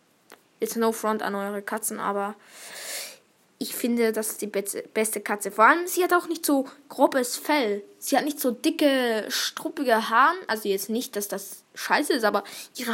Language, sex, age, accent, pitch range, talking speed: Finnish, female, 10-29, German, 220-280 Hz, 190 wpm